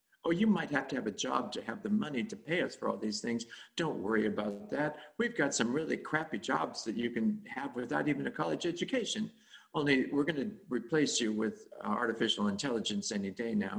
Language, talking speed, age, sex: English, 215 wpm, 50-69, male